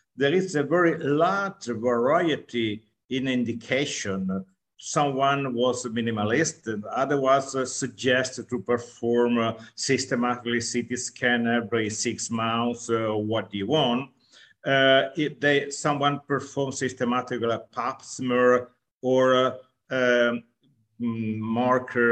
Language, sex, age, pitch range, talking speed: English, male, 50-69, 120-155 Hz, 115 wpm